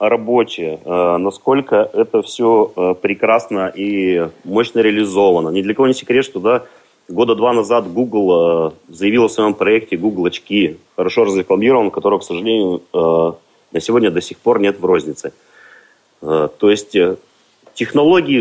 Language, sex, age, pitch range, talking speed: Russian, male, 30-49, 90-130 Hz, 135 wpm